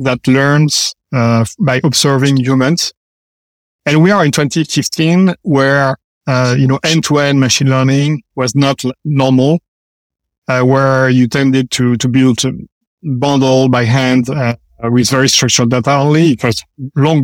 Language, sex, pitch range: English, male, 125-145 Hz